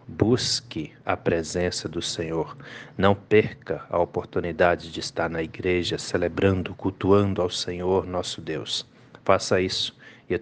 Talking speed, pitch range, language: 130 wpm, 90-105 Hz, Portuguese